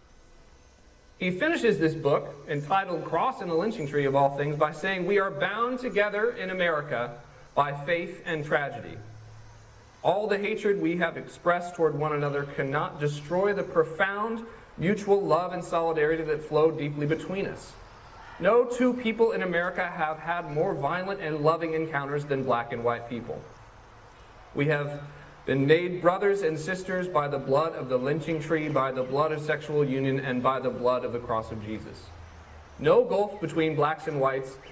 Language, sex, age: English, male, 40-59